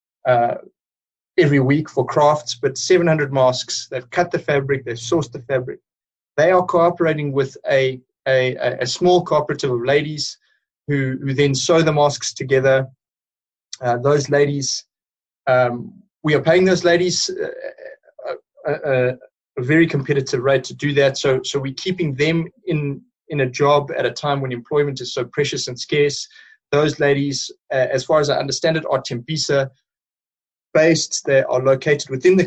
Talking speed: 165 wpm